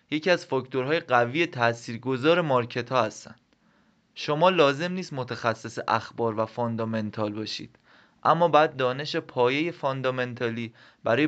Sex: male